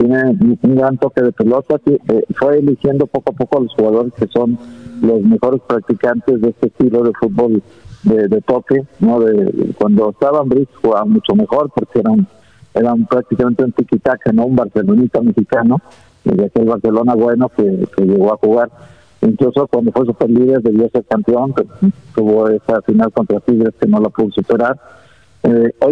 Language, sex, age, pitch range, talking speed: Spanish, male, 50-69, 115-140 Hz, 180 wpm